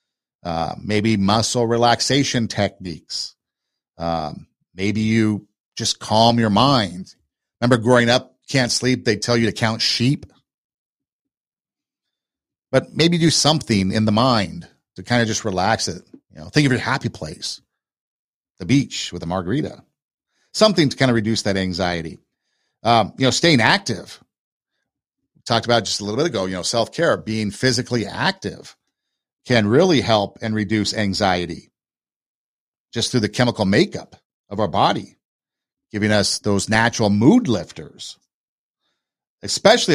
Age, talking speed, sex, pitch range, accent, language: 50-69, 145 wpm, male, 105-135 Hz, American, English